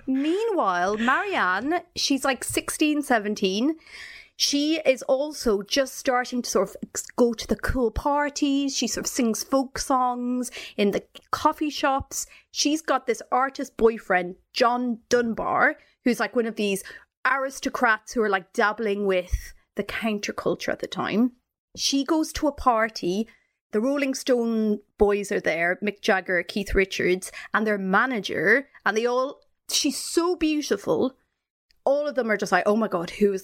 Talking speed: 155 wpm